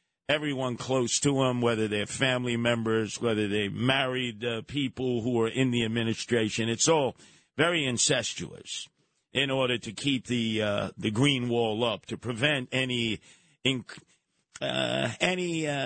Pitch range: 110-140 Hz